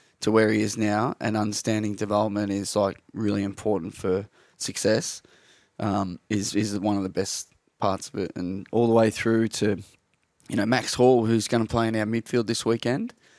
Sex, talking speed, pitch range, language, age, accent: male, 195 wpm, 100-115 Hz, English, 20-39, Australian